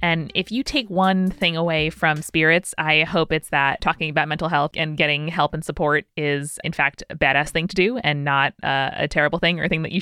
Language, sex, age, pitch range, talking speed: English, female, 20-39, 165-215 Hz, 245 wpm